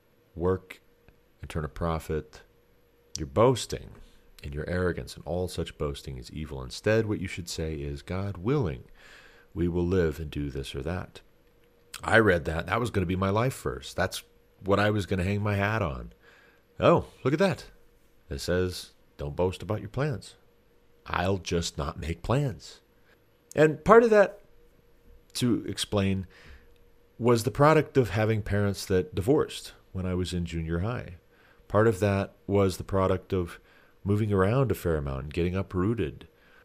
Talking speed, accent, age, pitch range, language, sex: 170 wpm, American, 40-59, 80-105 Hz, English, male